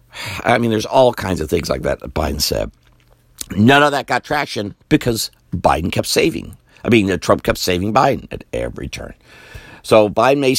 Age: 60-79